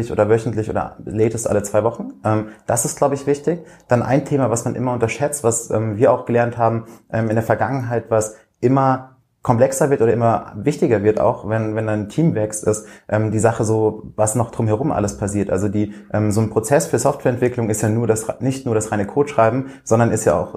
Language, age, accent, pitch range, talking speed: German, 20-39, German, 110-120 Hz, 215 wpm